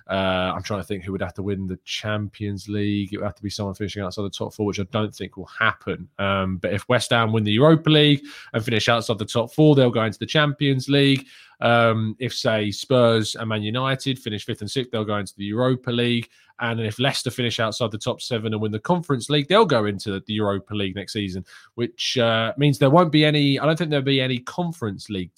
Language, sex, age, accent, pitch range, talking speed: English, male, 20-39, British, 105-145 Hz, 245 wpm